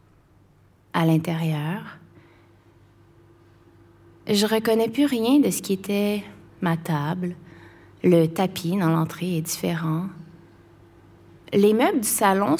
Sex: female